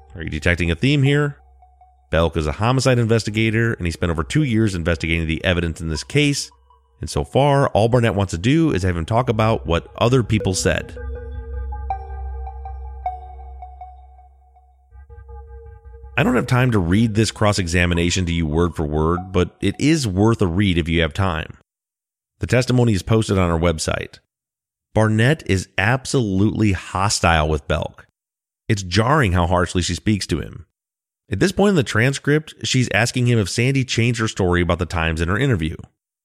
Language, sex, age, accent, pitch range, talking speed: English, male, 30-49, American, 85-115 Hz, 170 wpm